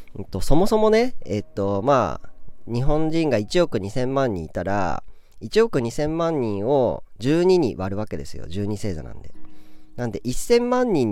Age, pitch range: 40-59, 95-160 Hz